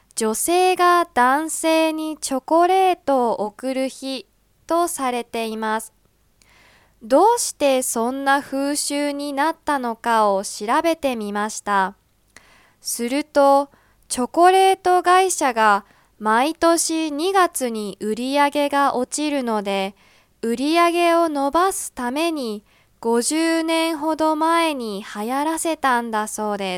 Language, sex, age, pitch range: Japanese, female, 20-39, 220-315 Hz